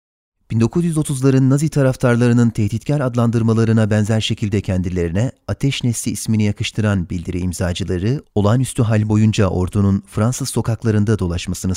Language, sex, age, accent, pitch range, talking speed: Turkish, male, 30-49, native, 100-120 Hz, 105 wpm